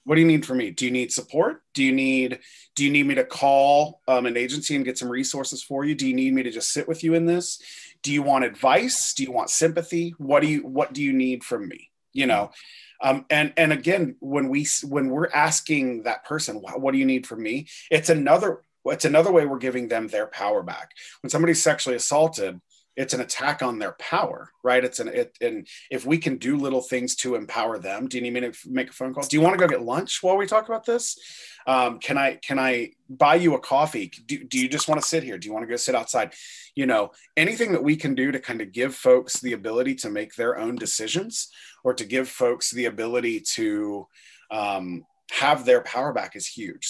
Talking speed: 240 wpm